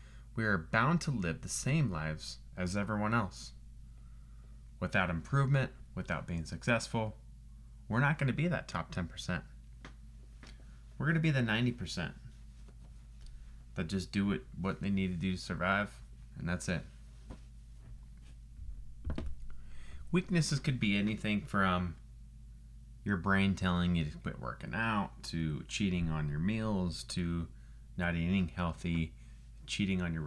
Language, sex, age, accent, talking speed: English, male, 30-49, American, 130 wpm